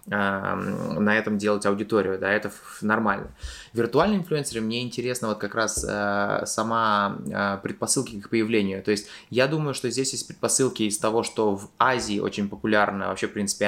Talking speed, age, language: 175 wpm, 20-39, Russian